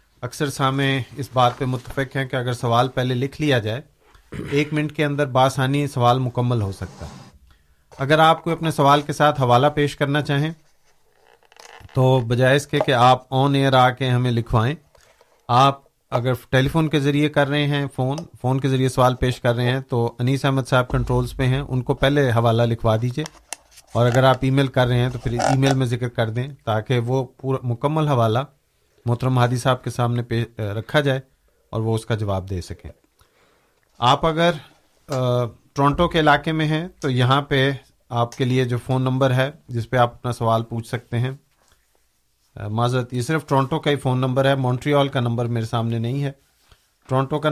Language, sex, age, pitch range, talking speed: Urdu, male, 40-59, 120-140 Hz, 200 wpm